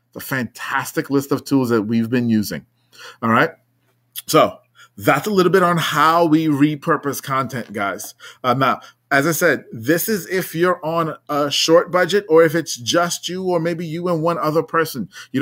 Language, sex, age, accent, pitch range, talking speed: English, male, 30-49, American, 130-165 Hz, 185 wpm